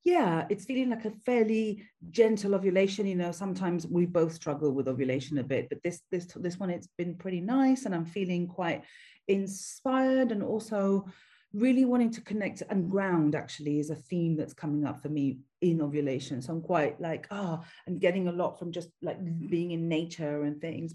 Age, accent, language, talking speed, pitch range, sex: 40-59, British, English, 200 wpm, 165-225 Hz, female